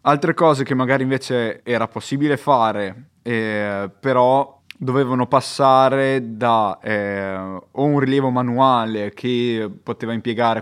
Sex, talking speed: male, 120 wpm